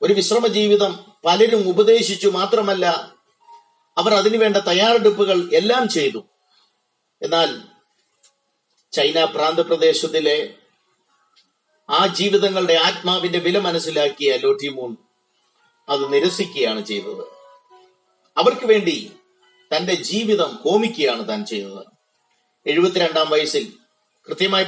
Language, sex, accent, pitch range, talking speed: Malayalam, male, native, 165-245 Hz, 85 wpm